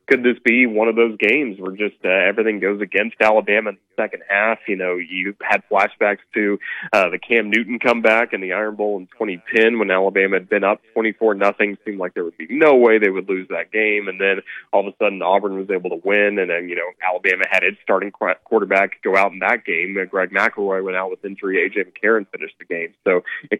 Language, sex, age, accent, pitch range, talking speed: English, male, 20-39, American, 100-115 Hz, 235 wpm